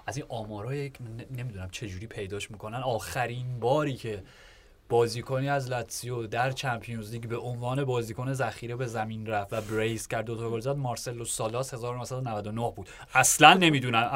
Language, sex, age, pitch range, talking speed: Persian, male, 30-49, 115-145 Hz, 145 wpm